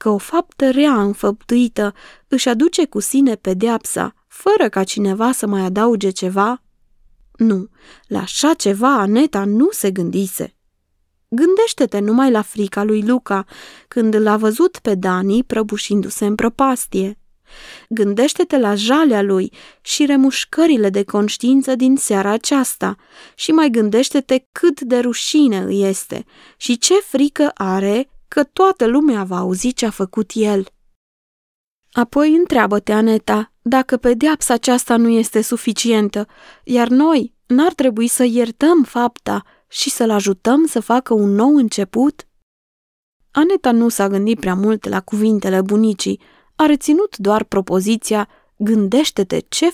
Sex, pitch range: female, 205-275 Hz